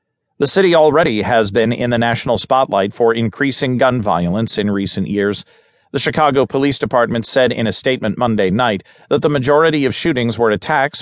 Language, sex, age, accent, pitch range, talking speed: English, male, 40-59, American, 110-145 Hz, 180 wpm